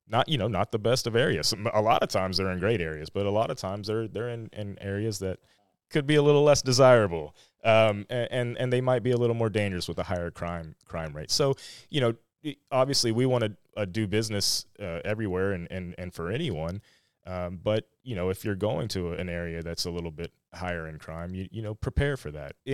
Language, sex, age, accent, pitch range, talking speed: English, male, 30-49, American, 85-115 Hz, 235 wpm